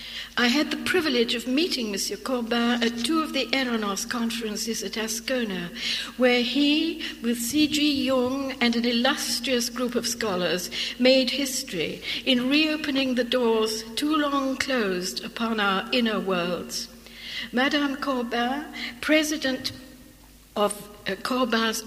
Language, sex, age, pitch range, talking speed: English, female, 60-79, 220-265 Hz, 125 wpm